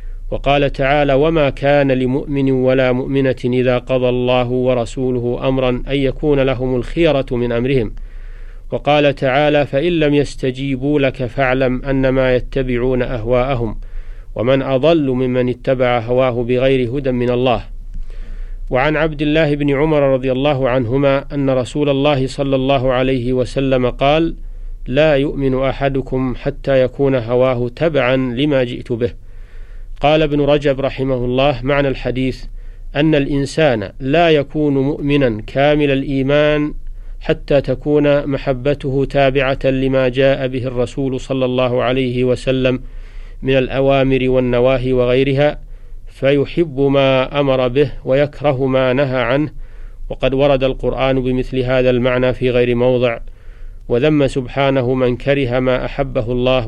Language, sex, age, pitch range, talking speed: Arabic, male, 40-59, 125-140 Hz, 125 wpm